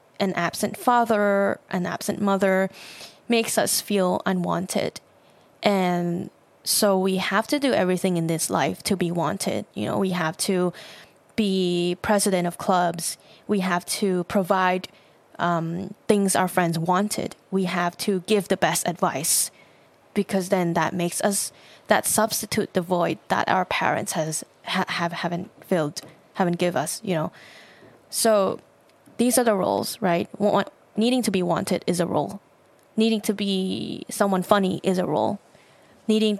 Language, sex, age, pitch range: Thai, female, 10-29, 180-210 Hz